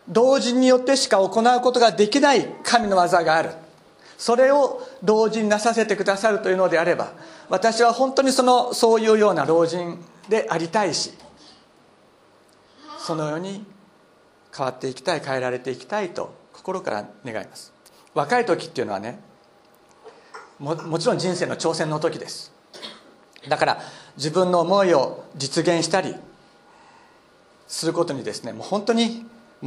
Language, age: Japanese, 50-69